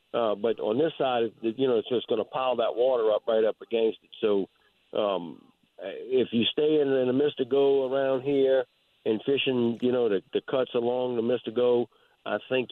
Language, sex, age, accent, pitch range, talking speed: English, male, 50-69, American, 120-140 Hz, 210 wpm